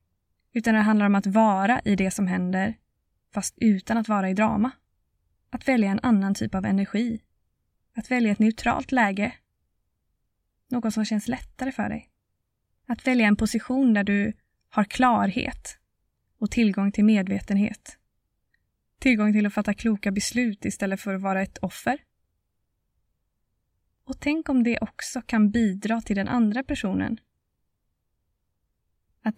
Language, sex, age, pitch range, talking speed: Swedish, female, 20-39, 195-235 Hz, 145 wpm